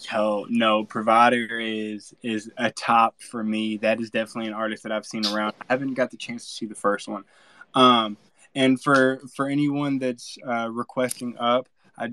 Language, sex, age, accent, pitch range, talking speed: English, male, 20-39, American, 115-140 Hz, 185 wpm